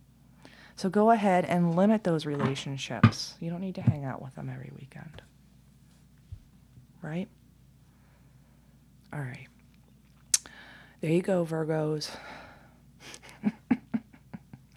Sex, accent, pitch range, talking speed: female, American, 160-190 Hz, 100 wpm